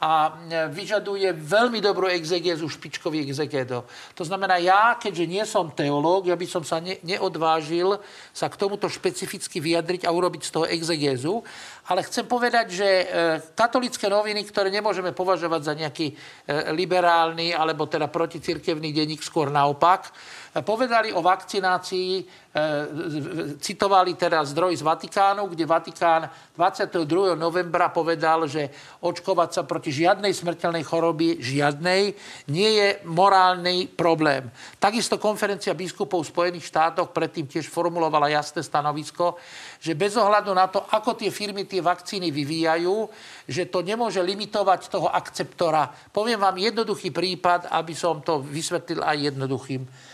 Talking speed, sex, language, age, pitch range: 130 wpm, male, Slovak, 50-69, 160-195 Hz